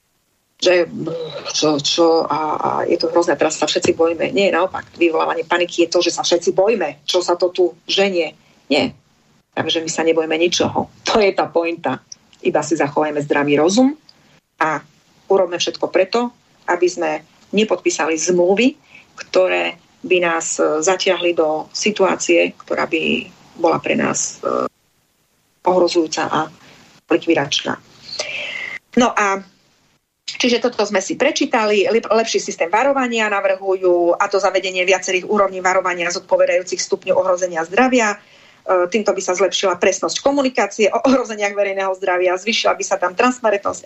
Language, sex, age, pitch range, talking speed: Slovak, female, 30-49, 170-210 Hz, 140 wpm